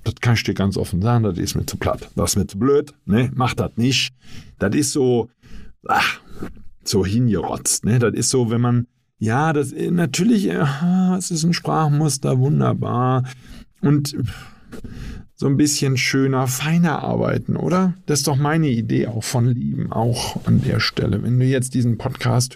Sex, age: male, 50-69